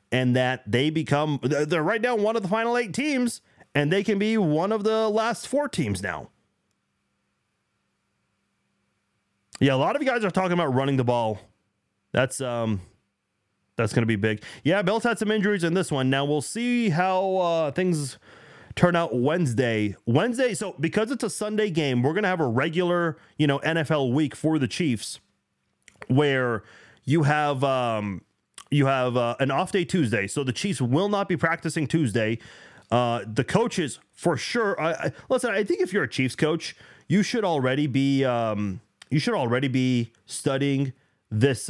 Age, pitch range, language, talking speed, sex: 30-49, 120-175 Hz, English, 175 wpm, male